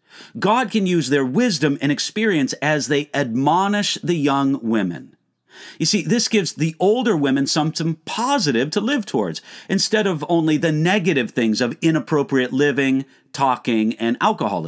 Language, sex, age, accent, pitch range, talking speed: English, male, 50-69, American, 140-195 Hz, 150 wpm